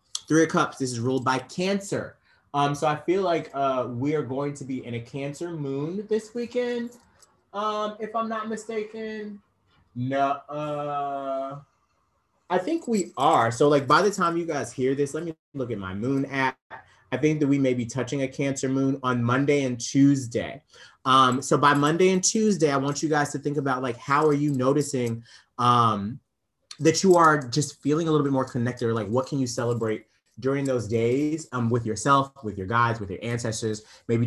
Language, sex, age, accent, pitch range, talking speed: English, male, 30-49, American, 120-150 Hz, 200 wpm